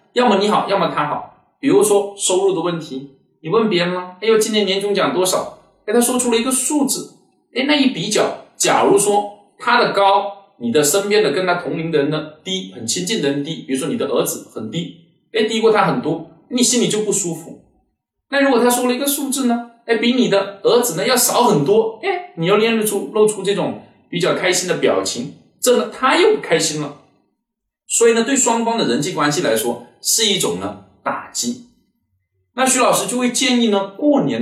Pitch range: 180-240 Hz